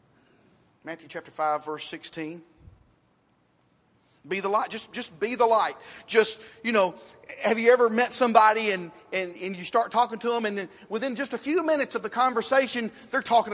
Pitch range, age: 175-245 Hz, 40-59